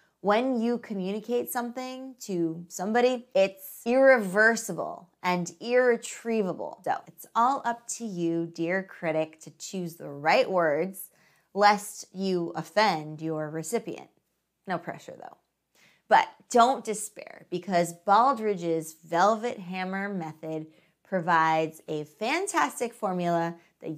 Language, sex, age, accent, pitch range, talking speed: English, female, 20-39, American, 170-240 Hz, 110 wpm